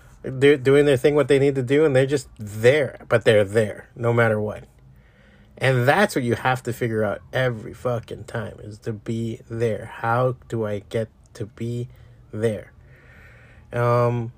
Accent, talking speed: American, 175 wpm